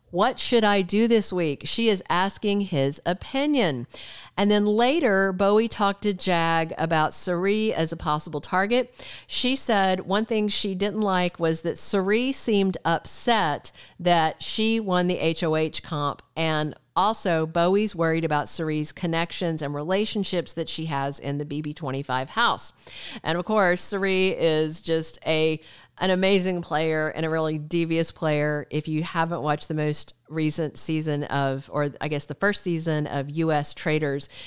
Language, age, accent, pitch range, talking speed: English, 50-69, American, 150-195 Hz, 160 wpm